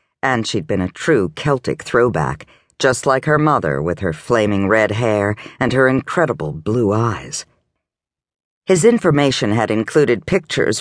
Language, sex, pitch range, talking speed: English, female, 105-150 Hz, 145 wpm